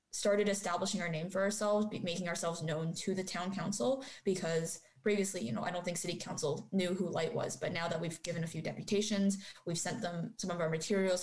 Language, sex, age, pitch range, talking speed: English, female, 20-39, 170-205 Hz, 220 wpm